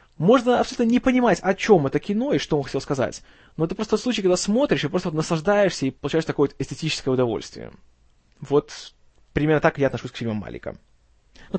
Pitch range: 130-170 Hz